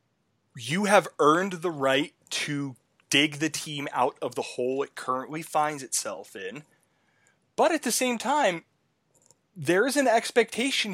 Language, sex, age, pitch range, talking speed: English, male, 20-39, 140-195 Hz, 150 wpm